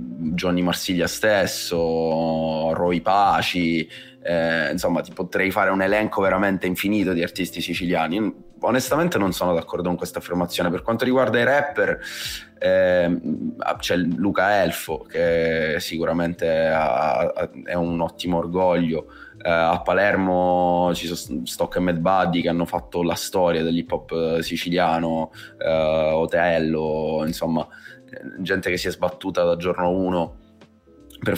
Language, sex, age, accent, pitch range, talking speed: Italian, male, 20-39, native, 80-90 Hz, 135 wpm